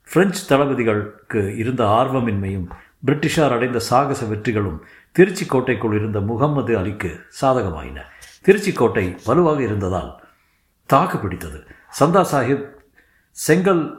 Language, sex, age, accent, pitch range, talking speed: Tamil, male, 60-79, native, 100-140 Hz, 85 wpm